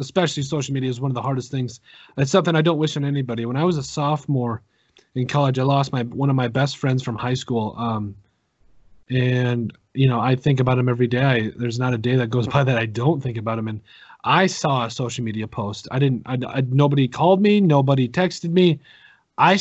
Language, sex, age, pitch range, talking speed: English, male, 30-49, 125-160 Hz, 235 wpm